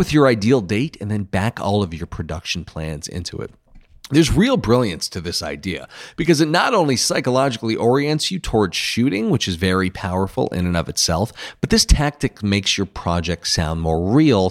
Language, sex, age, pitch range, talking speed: English, male, 40-59, 90-130 Hz, 190 wpm